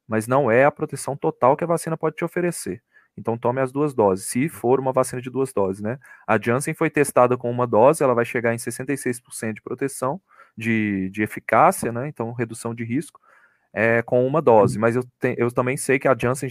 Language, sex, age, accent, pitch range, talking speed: Portuguese, male, 20-39, Brazilian, 120-150 Hz, 220 wpm